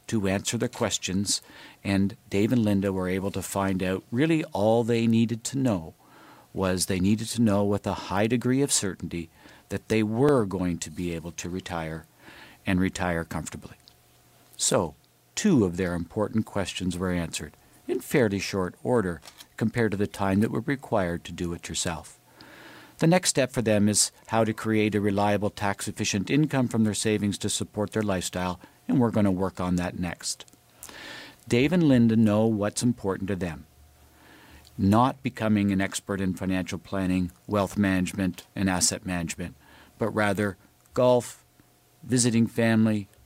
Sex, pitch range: male, 90-110 Hz